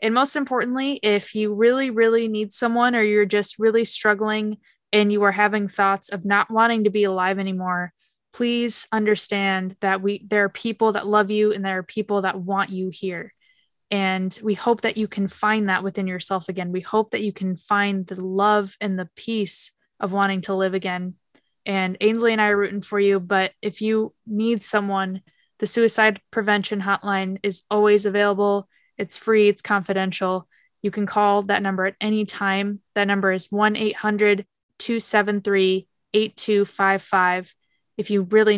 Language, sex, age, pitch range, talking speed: English, female, 10-29, 190-215 Hz, 170 wpm